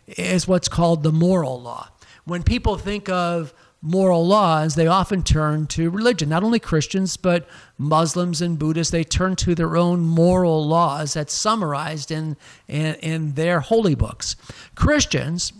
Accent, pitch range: American, 145-175 Hz